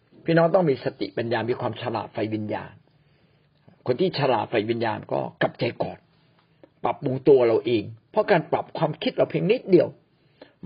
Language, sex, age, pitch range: Thai, male, 60-79, 135-190 Hz